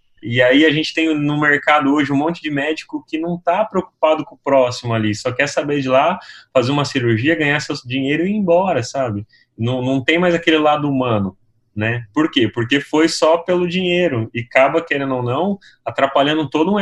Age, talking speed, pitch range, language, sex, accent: 20-39, 205 wpm, 115-155 Hz, Portuguese, male, Brazilian